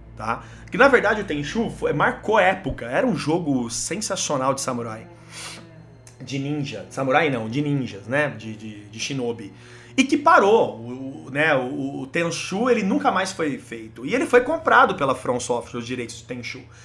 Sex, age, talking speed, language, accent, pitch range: male, 30-49, 175 wpm, Portuguese, Brazilian, 125-200 Hz